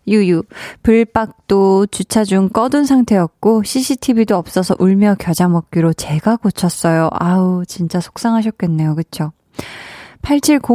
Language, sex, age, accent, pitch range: Korean, female, 20-39, native, 185-240 Hz